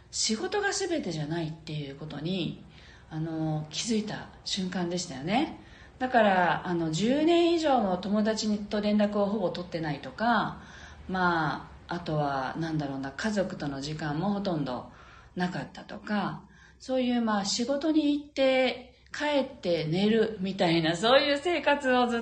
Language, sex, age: Japanese, female, 40-59